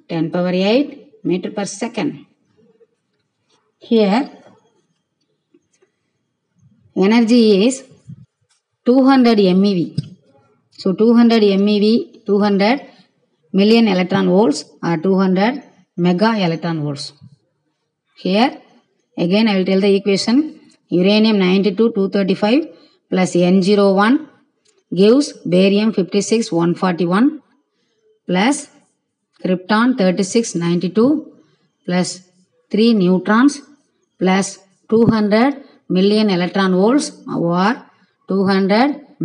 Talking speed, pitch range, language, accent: 85 wpm, 185-245 Hz, Tamil, native